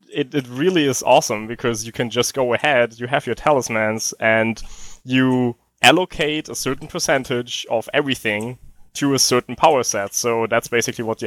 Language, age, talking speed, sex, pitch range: English, 20-39, 175 wpm, male, 115-140 Hz